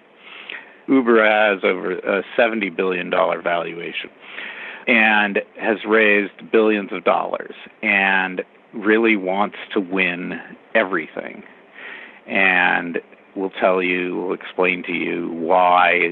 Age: 50-69